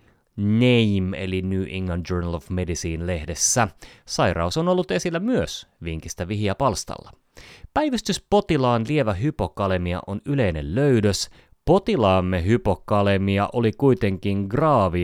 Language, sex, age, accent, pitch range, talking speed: Finnish, male, 30-49, native, 90-115 Hz, 105 wpm